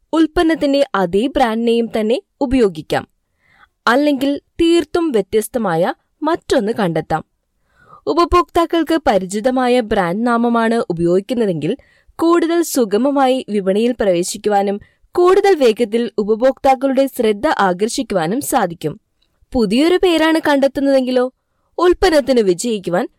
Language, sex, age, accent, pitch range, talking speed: Malayalam, female, 20-39, native, 205-295 Hz, 80 wpm